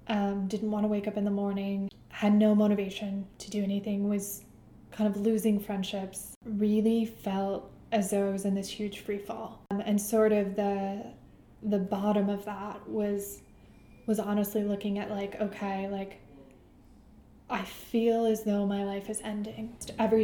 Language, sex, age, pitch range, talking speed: English, female, 10-29, 200-220 Hz, 170 wpm